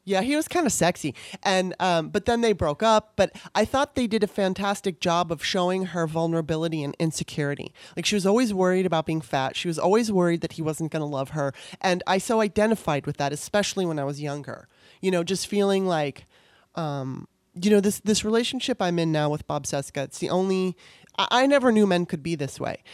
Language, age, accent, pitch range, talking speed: English, 30-49, American, 155-195 Hz, 225 wpm